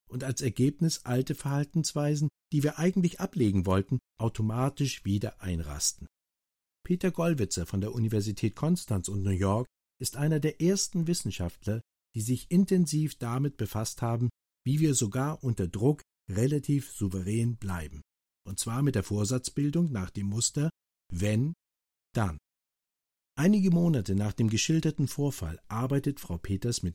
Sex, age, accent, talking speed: male, 50-69, German, 135 wpm